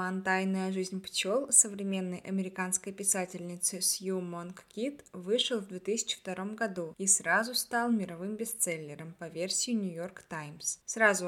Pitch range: 180-215 Hz